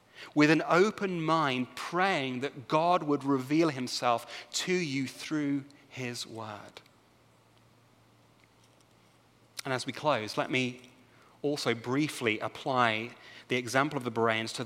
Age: 30-49